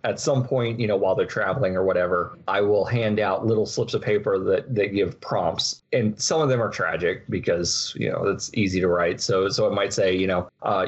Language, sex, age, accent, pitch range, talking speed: English, male, 30-49, American, 95-125 Hz, 235 wpm